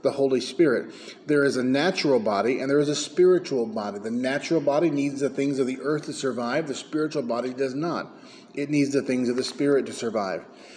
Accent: American